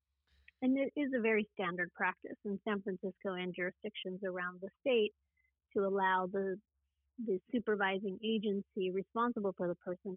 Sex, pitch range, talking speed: female, 185-225 Hz, 150 wpm